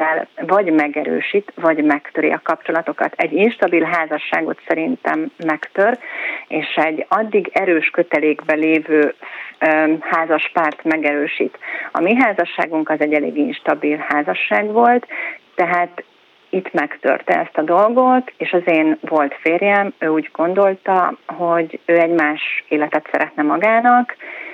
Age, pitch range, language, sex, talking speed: 30-49, 160-200 Hz, Hungarian, female, 125 wpm